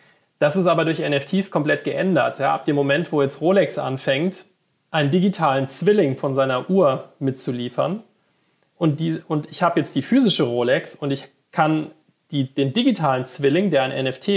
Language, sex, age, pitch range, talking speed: German, male, 40-59, 135-170 Hz, 170 wpm